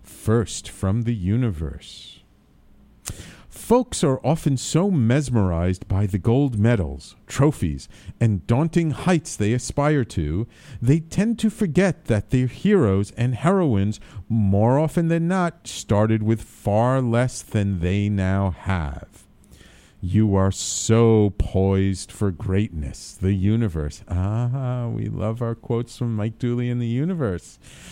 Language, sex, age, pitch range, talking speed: English, male, 40-59, 100-150 Hz, 130 wpm